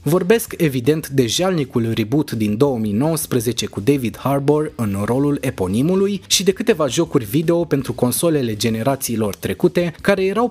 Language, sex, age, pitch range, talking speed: Romanian, male, 20-39, 120-180 Hz, 135 wpm